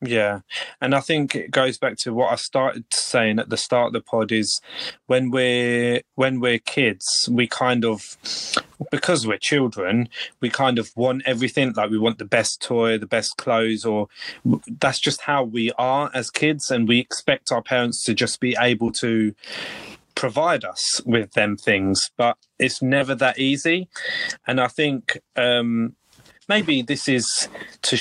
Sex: male